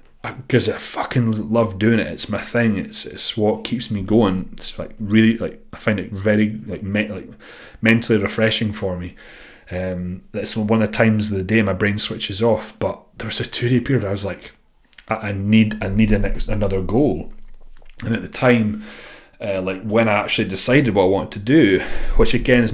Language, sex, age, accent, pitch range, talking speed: English, male, 30-49, British, 95-115 Hz, 215 wpm